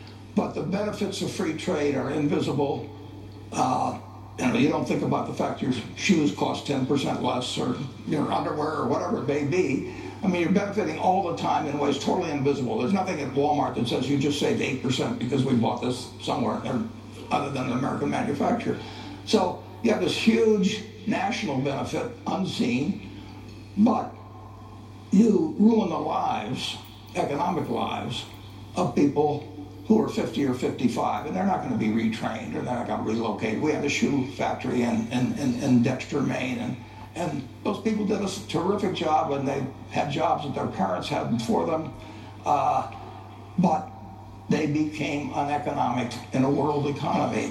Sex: male